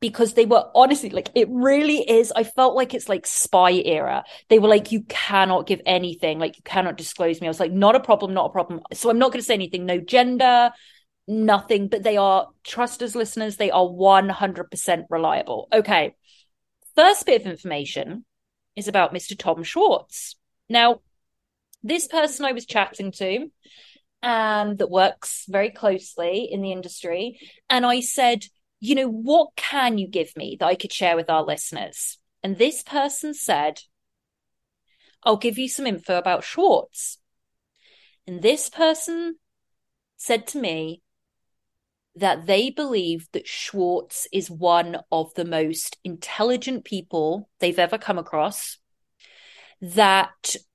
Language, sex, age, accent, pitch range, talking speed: English, female, 30-49, British, 180-245 Hz, 155 wpm